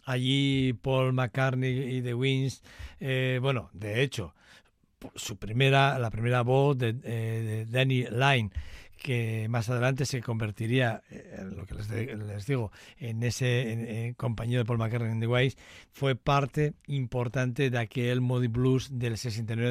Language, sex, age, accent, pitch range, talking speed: Spanish, male, 60-79, Spanish, 120-140 Hz, 155 wpm